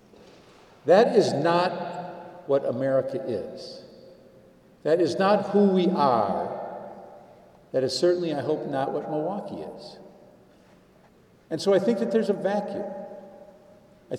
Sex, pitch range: male, 145-180 Hz